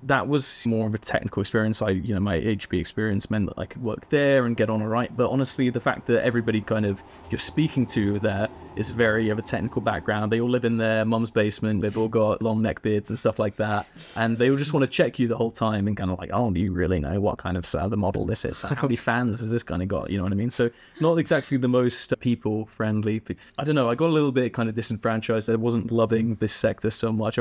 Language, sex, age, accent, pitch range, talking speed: English, male, 20-39, British, 105-125 Hz, 270 wpm